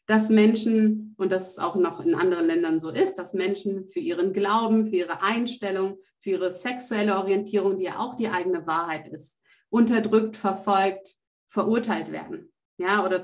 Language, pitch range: German, 185-225 Hz